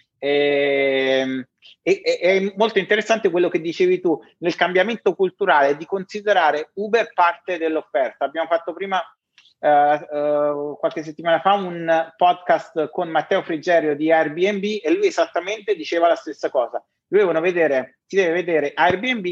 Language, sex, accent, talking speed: Italian, male, native, 135 wpm